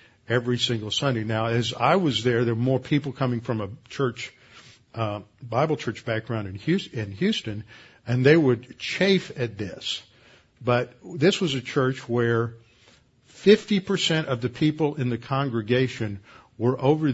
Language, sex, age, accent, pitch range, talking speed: English, male, 50-69, American, 115-130 Hz, 160 wpm